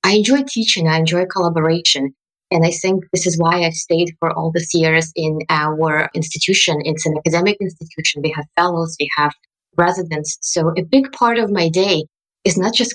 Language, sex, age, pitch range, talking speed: English, female, 20-39, 165-225 Hz, 190 wpm